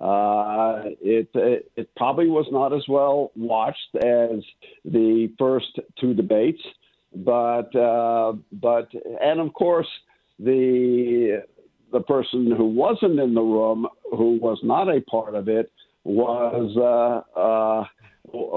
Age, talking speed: 60-79, 125 wpm